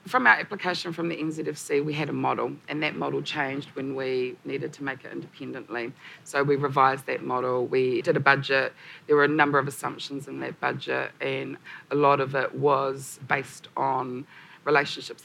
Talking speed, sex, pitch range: 190 wpm, female, 135-155 Hz